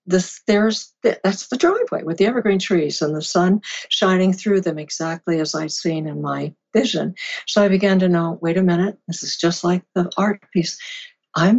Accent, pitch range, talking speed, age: American, 165-195 Hz, 195 wpm, 60-79